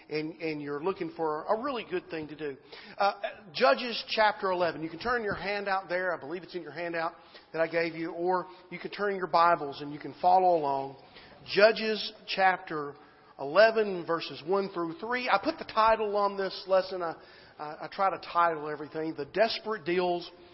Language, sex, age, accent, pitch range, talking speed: English, male, 40-59, American, 160-200 Hz, 185 wpm